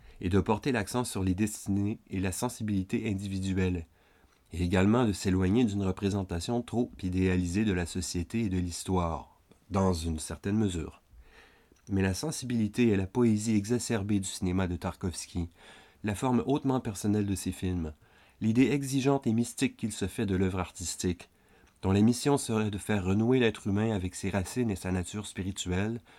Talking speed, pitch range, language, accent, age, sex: 165 wpm, 90-115 Hz, French, French, 30-49, male